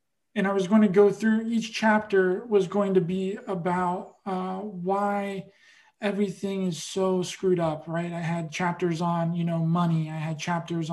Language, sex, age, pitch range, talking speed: English, male, 20-39, 175-205 Hz, 175 wpm